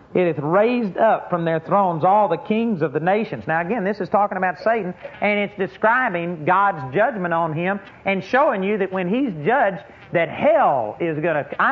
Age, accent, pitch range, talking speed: 50-69, American, 155-205 Hz, 200 wpm